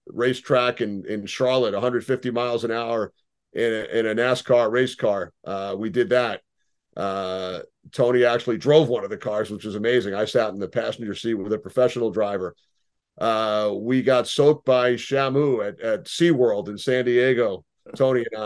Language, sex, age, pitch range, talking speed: English, male, 40-59, 115-130 Hz, 180 wpm